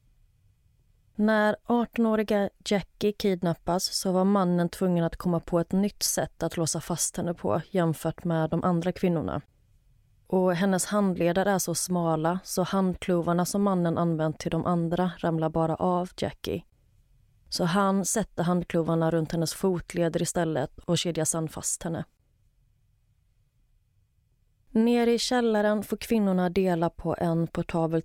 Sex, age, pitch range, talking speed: female, 30-49, 160-190 Hz, 135 wpm